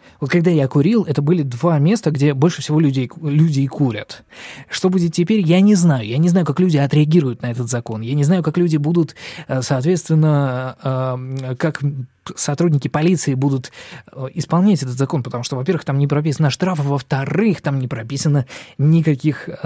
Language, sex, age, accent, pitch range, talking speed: Russian, male, 20-39, native, 130-160 Hz, 170 wpm